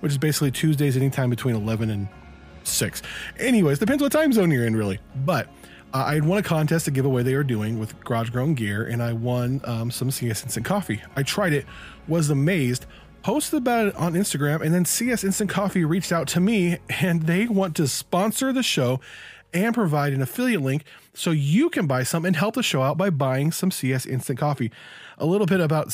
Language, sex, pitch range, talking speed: English, male, 135-185 Hz, 215 wpm